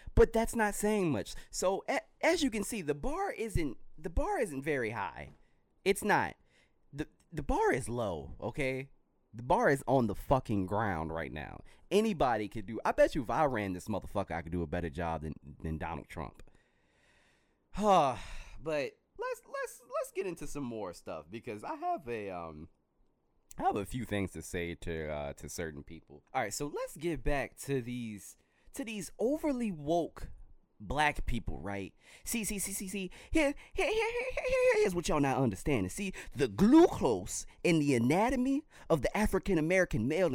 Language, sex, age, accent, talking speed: English, male, 20-39, American, 185 wpm